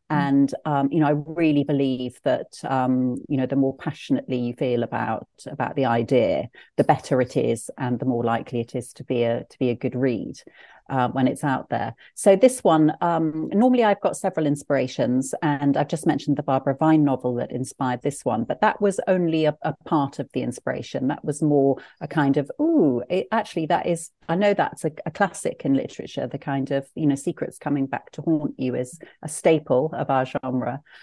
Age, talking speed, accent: 40-59, 215 wpm, British